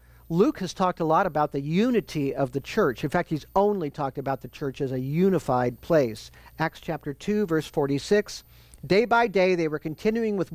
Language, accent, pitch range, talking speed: English, American, 140-190 Hz, 200 wpm